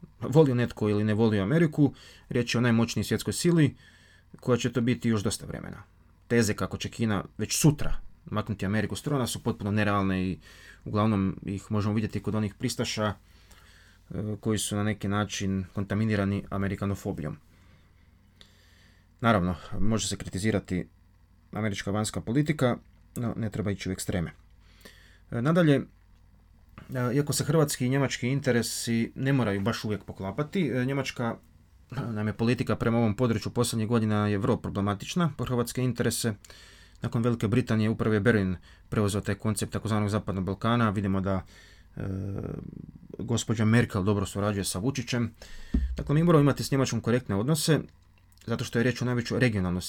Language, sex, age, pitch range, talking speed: Croatian, male, 30-49, 95-120 Hz, 145 wpm